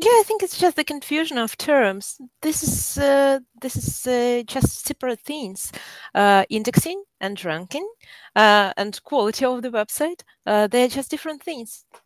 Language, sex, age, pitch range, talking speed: English, female, 30-49, 195-250 Hz, 165 wpm